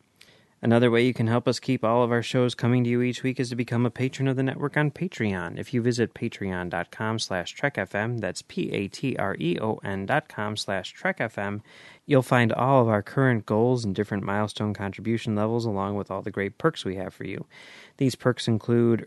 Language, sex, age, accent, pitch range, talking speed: English, male, 30-49, American, 105-130 Hz, 200 wpm